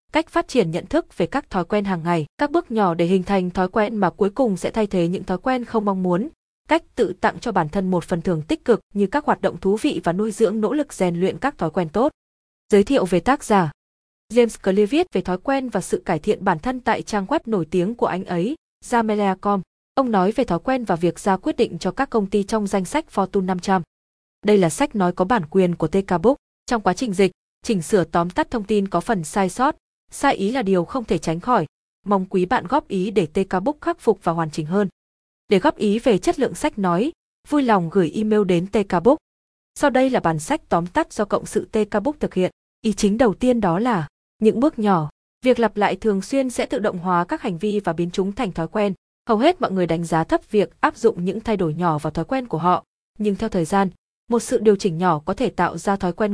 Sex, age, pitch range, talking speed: female, 20-39, 180-240 Hz, 255 wpm